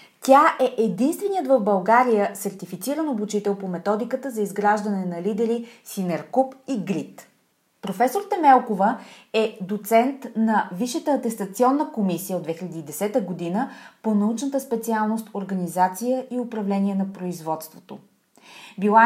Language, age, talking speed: Bulgarian, 30-49, 115 wpm